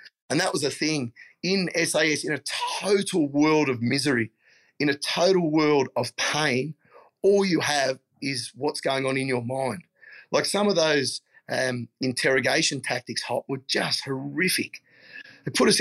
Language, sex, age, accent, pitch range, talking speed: English, male, 30-49, Australian, 135-170 Hz, 165 wpm